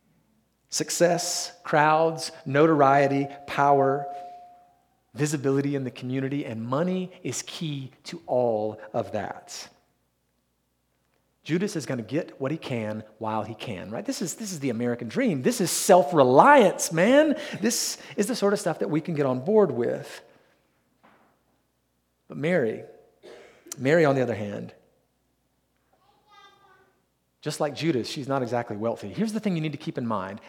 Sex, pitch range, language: male, 125-180 Hz, English